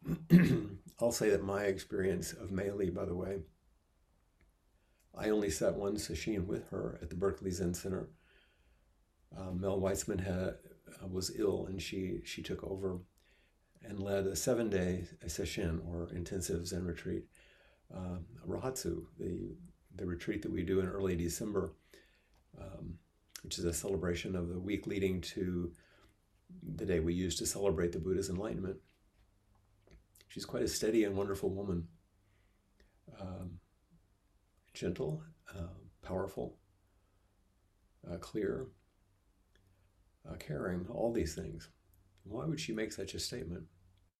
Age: 50-69